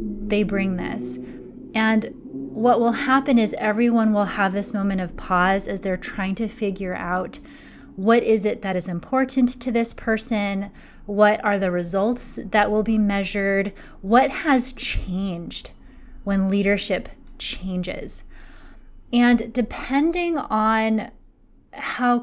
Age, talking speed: 20-39, 130 wpm